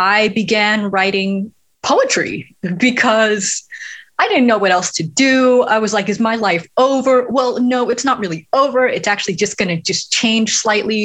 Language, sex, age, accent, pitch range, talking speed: English, female, 20-39, American, 175-230 Hz, 180 wpm